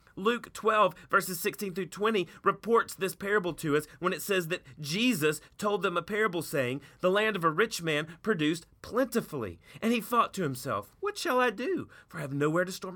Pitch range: 155-225 Hz